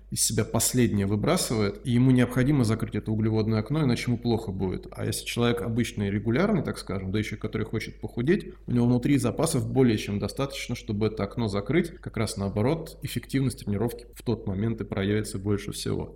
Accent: native